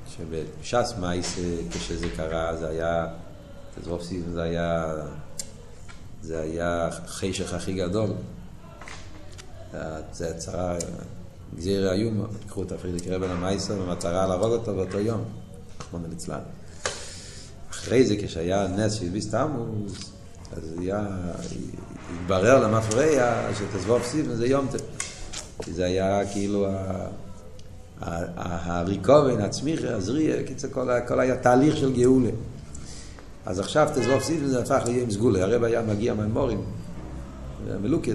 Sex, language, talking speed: male, Hebrew, 115 wpm